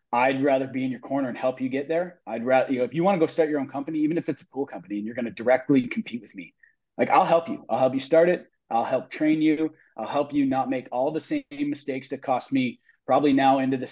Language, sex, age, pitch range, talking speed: English, male, 30-49, 120-160 Hz, 290 wpm